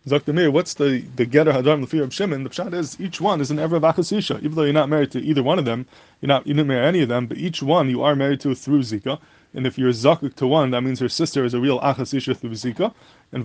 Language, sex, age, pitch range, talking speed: English, male, 20-39, 130-155 Hz, 290 wpm